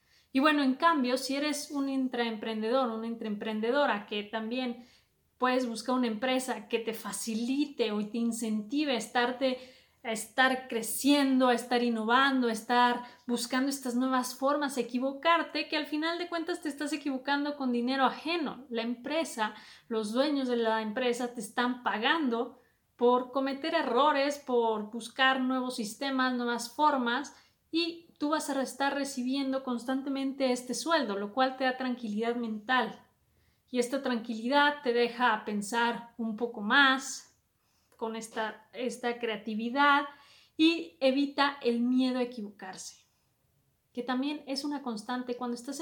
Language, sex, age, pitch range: Spanish, female, 30-49, 235-275 Hz